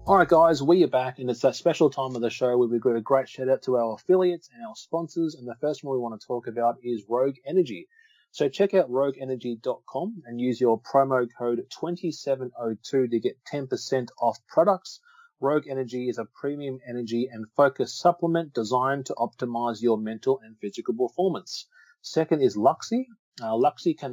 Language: English